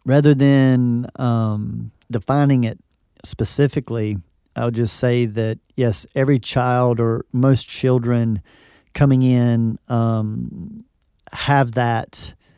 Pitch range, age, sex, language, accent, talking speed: 115-135 Hz, 40-59, male, English, American, 100 wpm